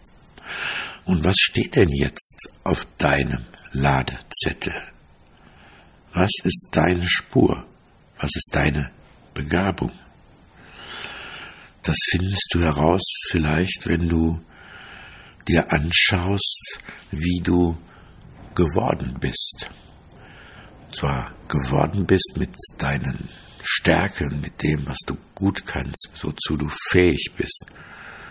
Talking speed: 100 wpm